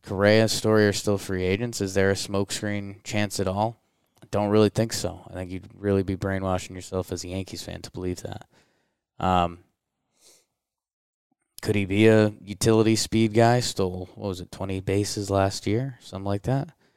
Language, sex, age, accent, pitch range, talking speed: English, male, 20-39, American, 95-110 Hz, 180 wpm